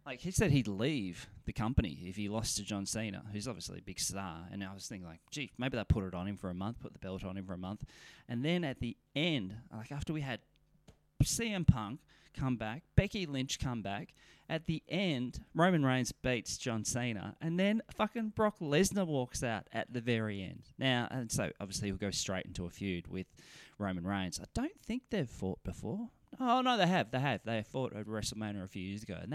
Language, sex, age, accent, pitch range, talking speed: English, male, 20-39, Australian, 100-145 Hz, 225 wpm